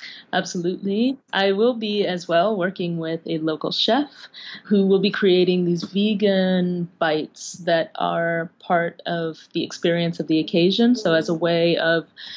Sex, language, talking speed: female, English, 155 wpm